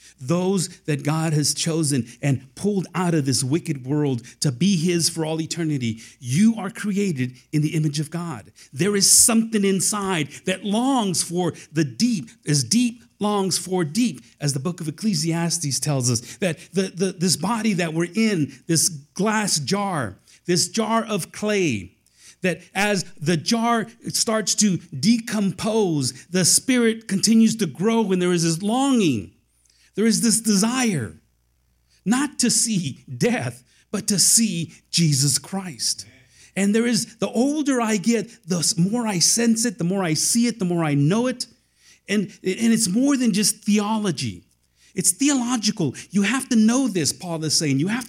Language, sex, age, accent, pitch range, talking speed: English, male, 40-59, American, 155-220 Hz, 165 wpm